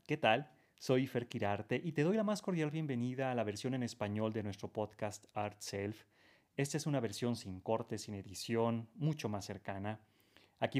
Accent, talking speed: Mexican, 190 wpm